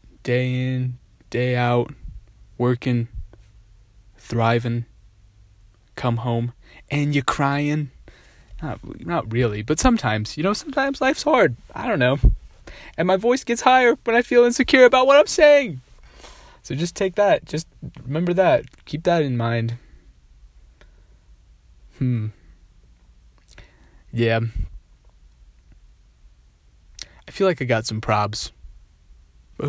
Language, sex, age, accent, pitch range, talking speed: English, male, 20-39, American, 80-130 Hz, 115 wpm